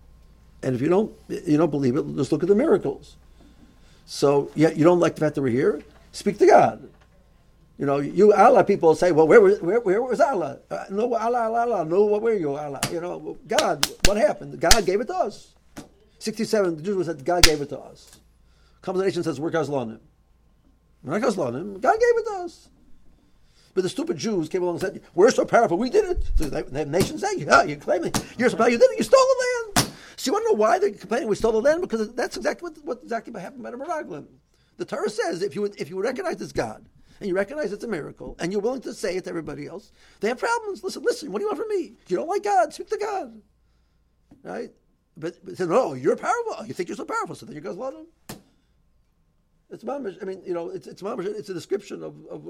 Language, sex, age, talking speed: English, male, 50-69, 235 wpm